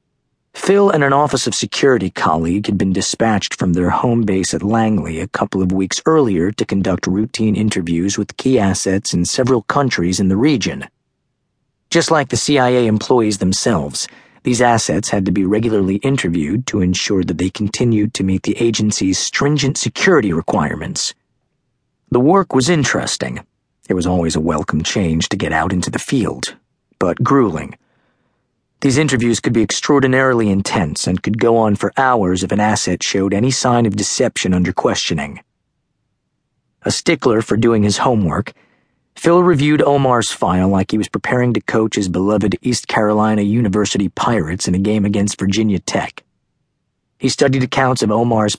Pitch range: 95-125 Hz